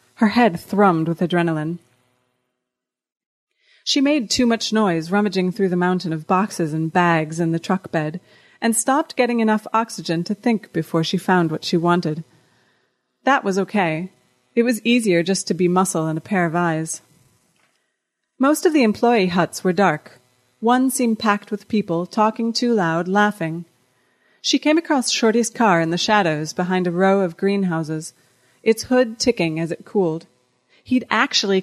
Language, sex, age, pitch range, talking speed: English, female, 30-49, 165-225 Hz, 165 wpm